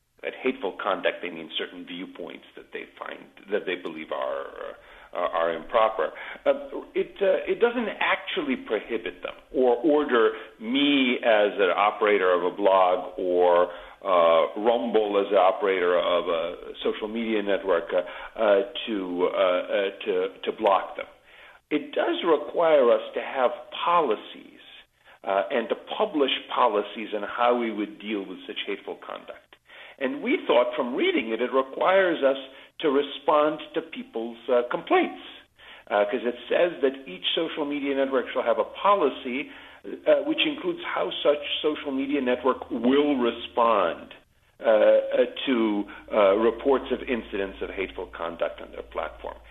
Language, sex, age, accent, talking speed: English, male, 50-69, American, 150 wpm